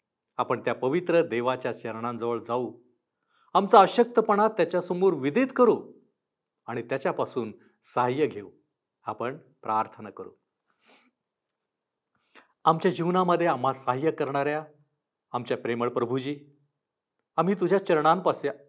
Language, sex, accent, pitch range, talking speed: Marathi, male, native, 125-185 Hz, 95 wpm